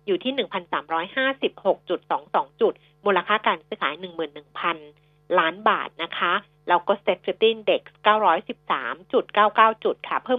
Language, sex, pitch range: Thai, female, 170-245 Hz